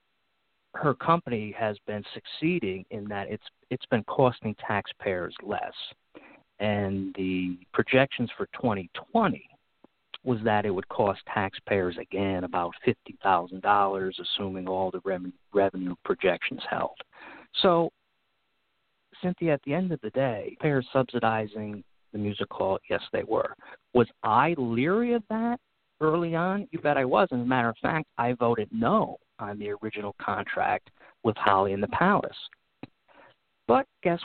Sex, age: male, 50-69